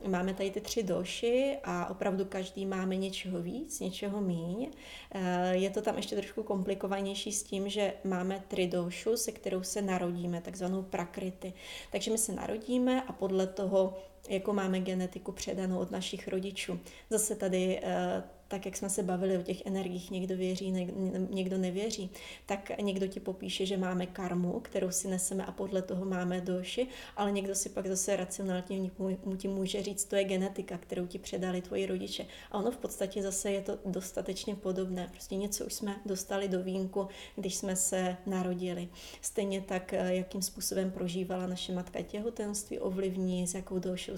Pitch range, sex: 185-200 Hz, female